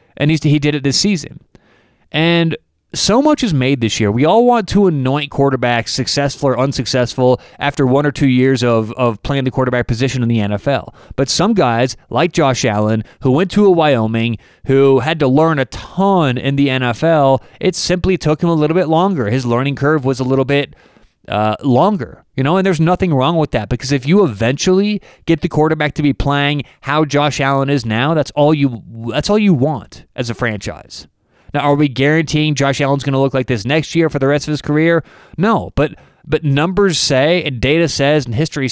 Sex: male